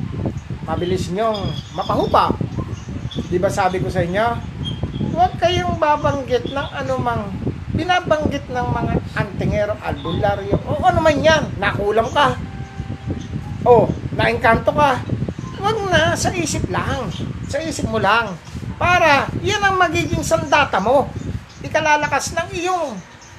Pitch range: 190-310 Hz